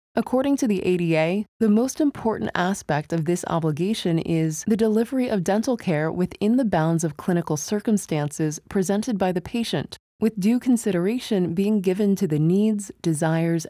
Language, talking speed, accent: English, 160 wpm, American